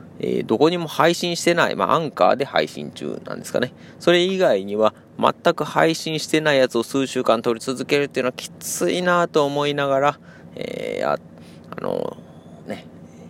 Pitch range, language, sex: 105-150 Hz, Japanese, male